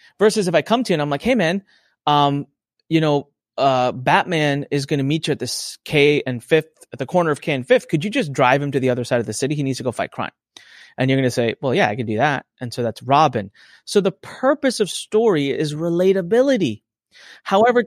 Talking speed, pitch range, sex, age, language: 250 wpm, 135-185 Hz, male, 30-49, English